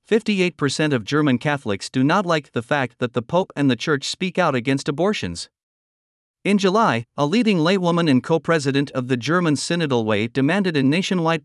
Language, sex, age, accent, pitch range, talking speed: English, male, 50-69, American, 130-175 Hz, 175 wpm